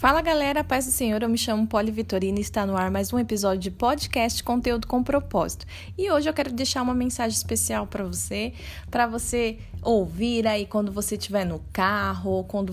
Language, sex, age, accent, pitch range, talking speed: Portuguese, female, 20-39, Brazilian, 215-290 Hz, 200 wpm